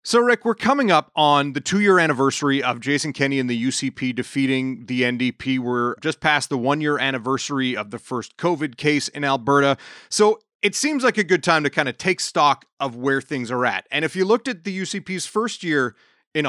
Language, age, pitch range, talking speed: English, 30-49, 125-160 Hz, 210 wpm